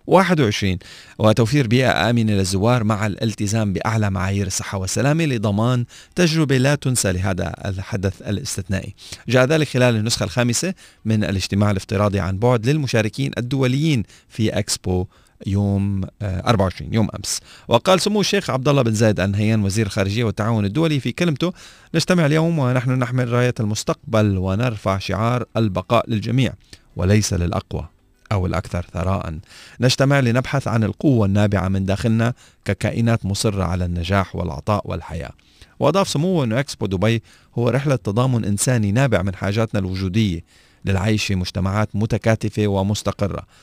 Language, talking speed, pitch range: Arabic, 130 wpm, 95-125 Hz